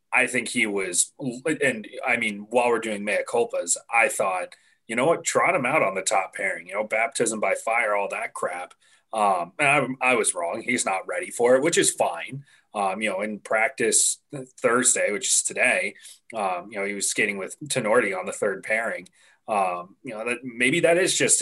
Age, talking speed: 30-49, 205 wpm